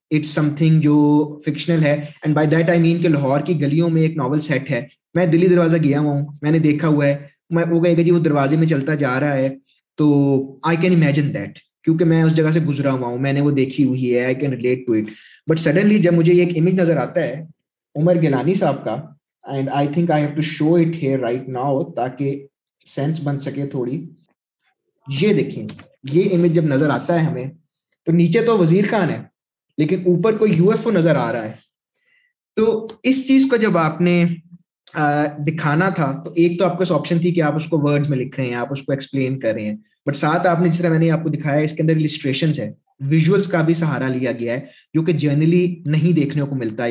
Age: 20-39